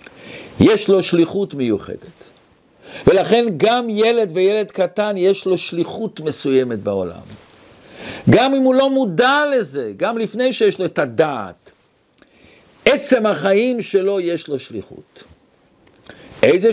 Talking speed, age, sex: 120 wpm, 50-69, male